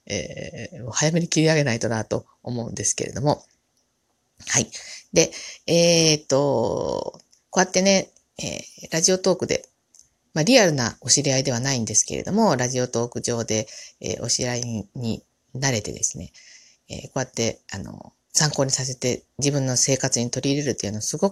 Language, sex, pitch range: Japanese, female, 120-190 Hz